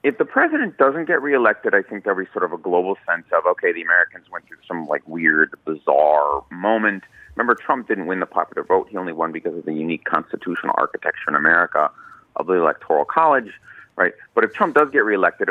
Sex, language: male, Korean